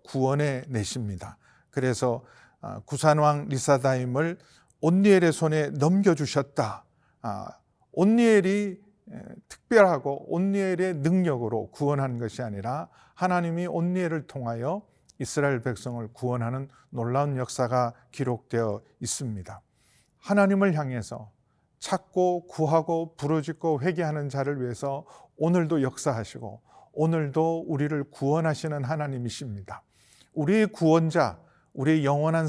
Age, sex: 40-59, male